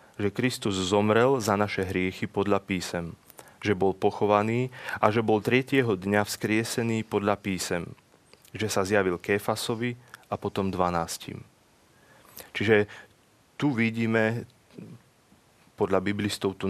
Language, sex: Slovak, male